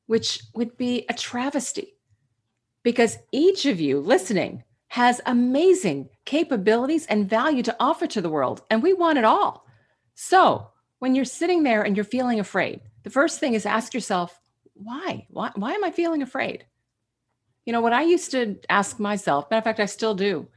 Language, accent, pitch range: English, American, 165-255 Hz